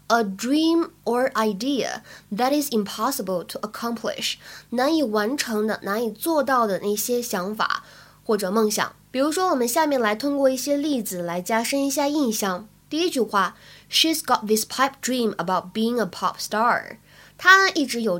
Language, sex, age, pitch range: Chinese, female, 20-39, 205-275 Hz